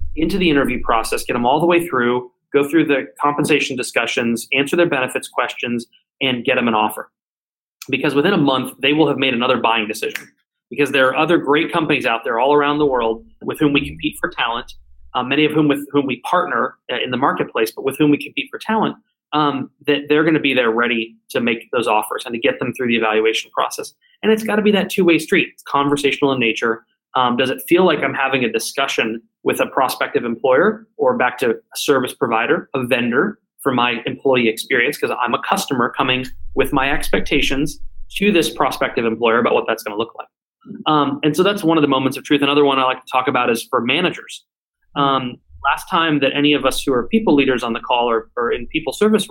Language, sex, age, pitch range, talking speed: English, male, 20-39, 120-150 Hz, 225 wpm